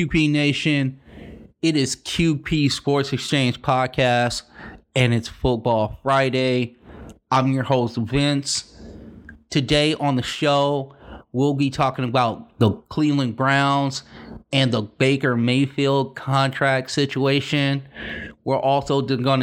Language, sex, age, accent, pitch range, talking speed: English, male, 30-49, American, 120-140 Hz, 110 wpm